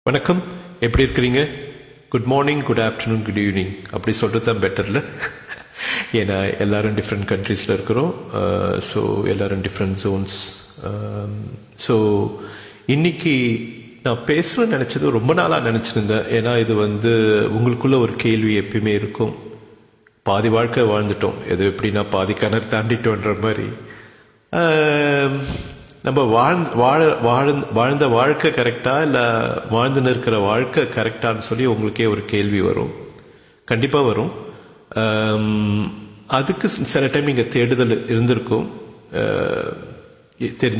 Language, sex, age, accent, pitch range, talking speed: English, male, 50-69, Indian, 105-130 Hz, 95 wpm